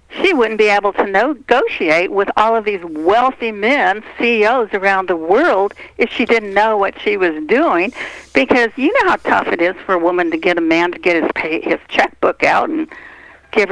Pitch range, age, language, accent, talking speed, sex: 190-315 Hz, 60-79, English, American, 200 wpm, female